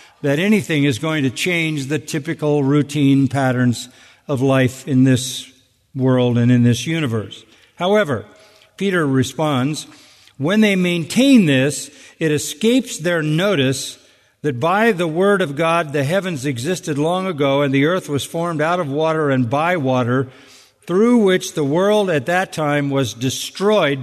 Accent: American